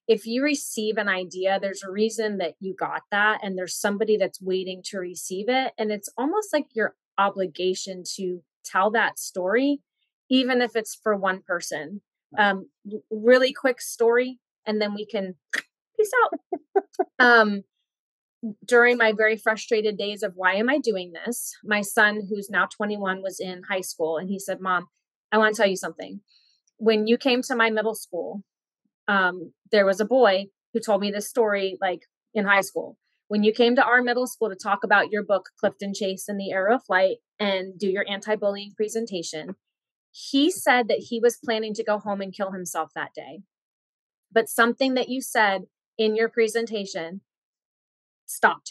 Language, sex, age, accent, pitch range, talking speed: English, female, 30-49, American, 190-230 Hz, 180 wpm